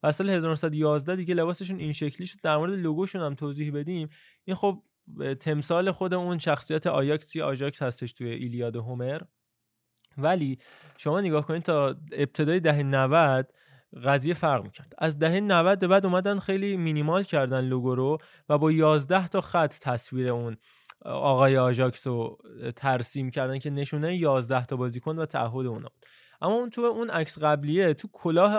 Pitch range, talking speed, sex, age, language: 130-175 Hz, 155 wpm, male, 20-39, Persian